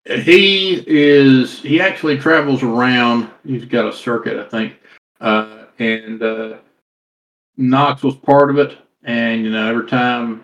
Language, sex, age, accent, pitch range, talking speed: English, male, 50-69, American, 110-130 Hz, 145 wpm